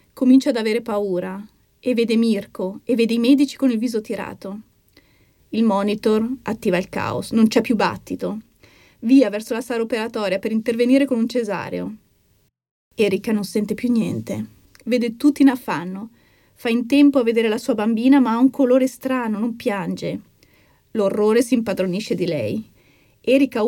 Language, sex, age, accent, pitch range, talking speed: Italian, female, 30-49, native, 210-255 Hz, 160 wpm